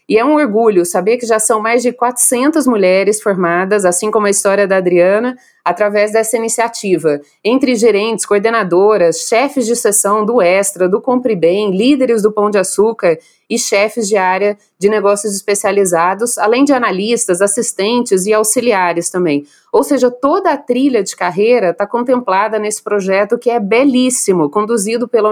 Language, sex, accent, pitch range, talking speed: Portuguese, female, Brazilian, 200-250 Hz, 160 wpm